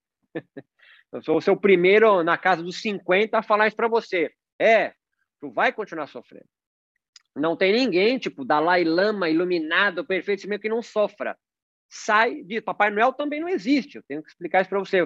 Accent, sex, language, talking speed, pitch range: Brazilian, male, Portuguese, 180 wpm, 185-270 Hz